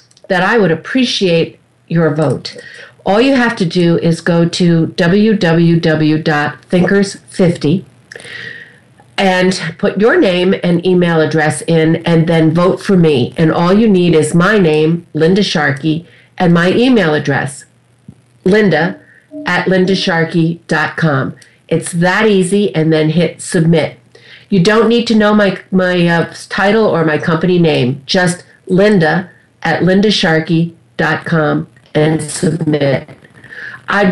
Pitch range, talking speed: 155-190 Hz, 125 wpm